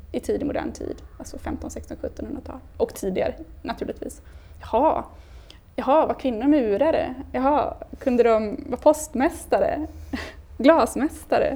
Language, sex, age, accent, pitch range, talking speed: Swedish, female, 20-39, native, 215-285 Hz, 115 wpm